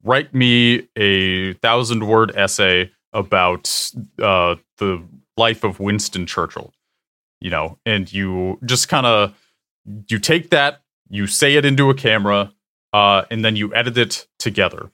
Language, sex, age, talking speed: English, male, 30-49, 145 wpm